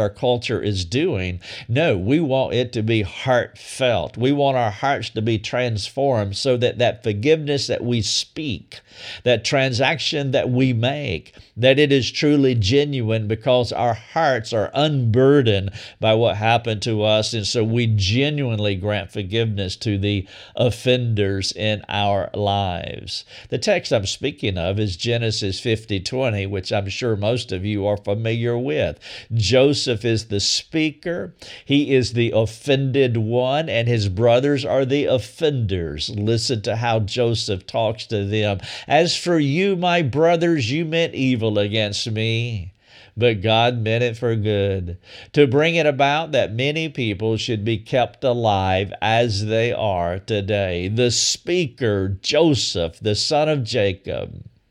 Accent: American